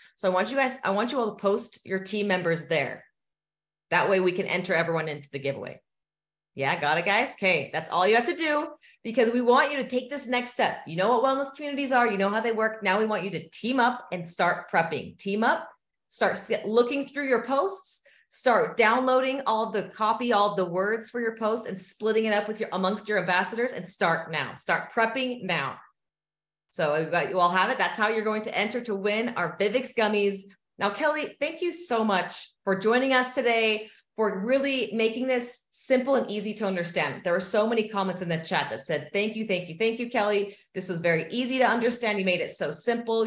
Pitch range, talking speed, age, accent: 180-245 Hz, 225 wpm, 30-49, American